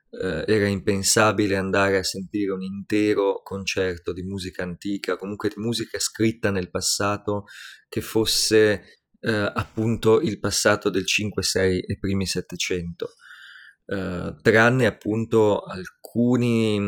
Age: 30-49